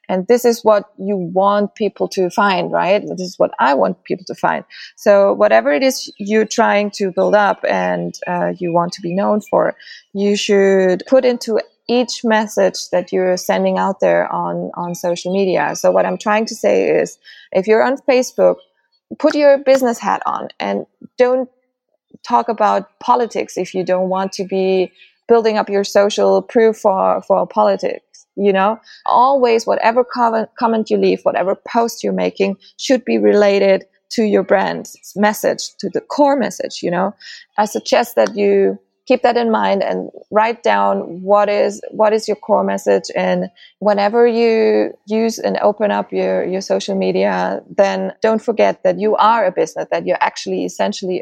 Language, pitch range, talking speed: English, 180-230 Hz, 175 wpm